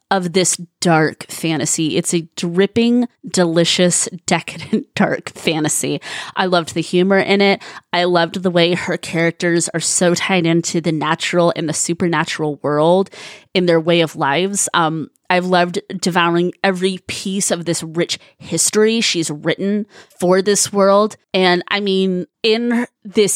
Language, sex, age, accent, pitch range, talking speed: English, female, 20-39, American, 170-205 Hz, 150 wpm